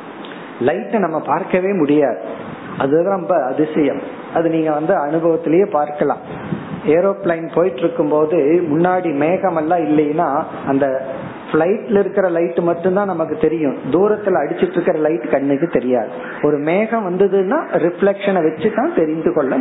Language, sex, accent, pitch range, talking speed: Tamil, male, native, 155-205 Hz, 120 wpm